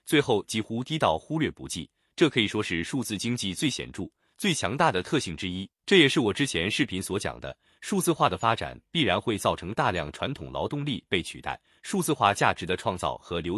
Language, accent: Chinese, native